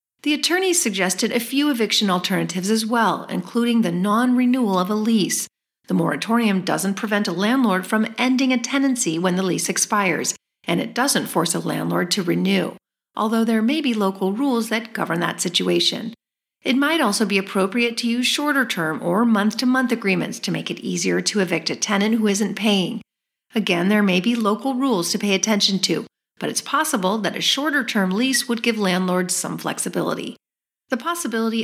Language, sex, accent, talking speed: English, female, American, 175 wpm